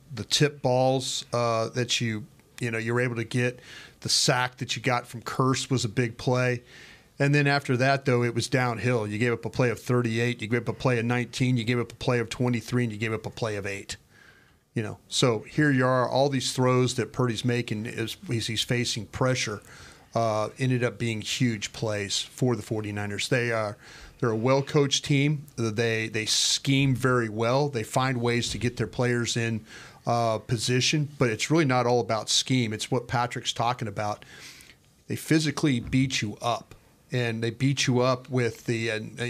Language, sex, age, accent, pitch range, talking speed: English, male, 40-59, American, 115-130 Hz, 200 wpm